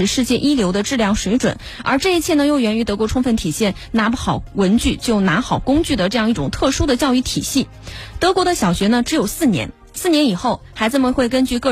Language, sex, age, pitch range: Chinese, female, 20-39, 205-275 Hz